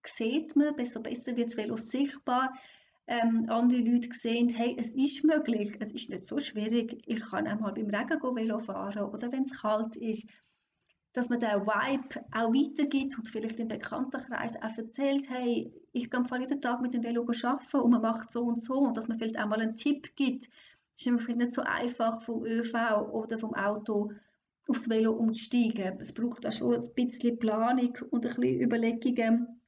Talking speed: 190 wpm